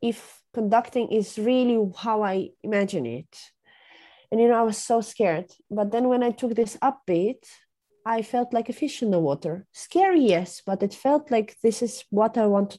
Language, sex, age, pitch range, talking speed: English, female, 20-39, 185-235 Hz, 195 wpm